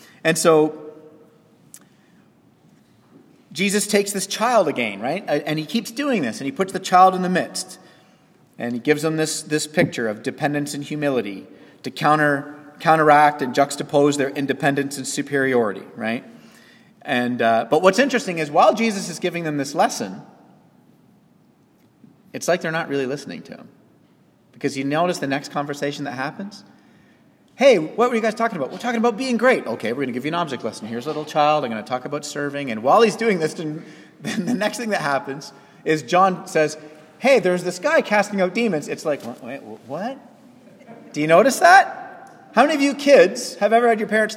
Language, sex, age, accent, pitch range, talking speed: English, male, 30-49, American, 145-205 Hz, 190 wpm